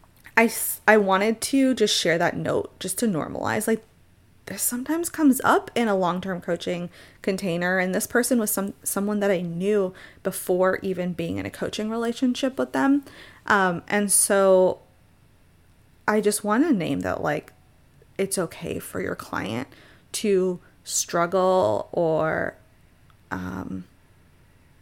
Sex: female